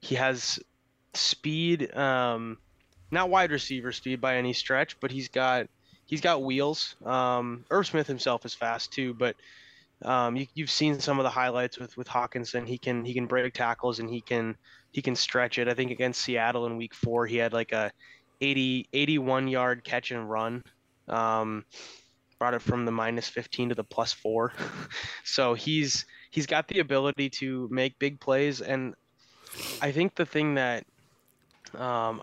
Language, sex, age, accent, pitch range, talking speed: English, male, 20-39, American, 120-135 Hz, 175 wpm